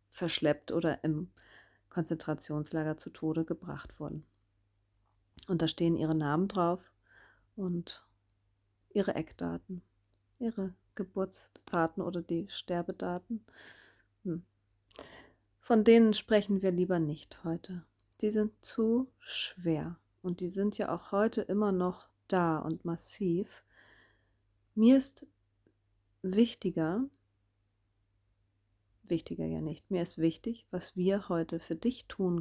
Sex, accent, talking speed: female, German, 110 wpm